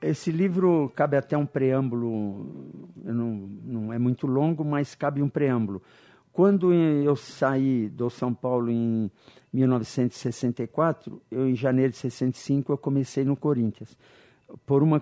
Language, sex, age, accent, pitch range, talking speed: Portuguese, male, 50-69, Brazilian, 125-150 Hz, 135 wpm